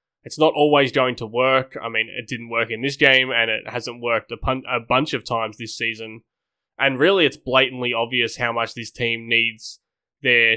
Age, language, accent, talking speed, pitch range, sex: 20-39, English, Australian, 205 wpm, 115-130 Hz, male